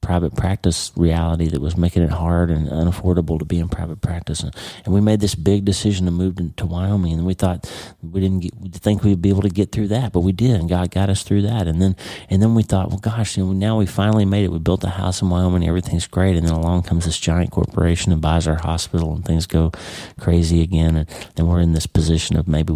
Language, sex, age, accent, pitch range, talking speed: English, male, 40-59, American, 80-95 Hz, 255 wpm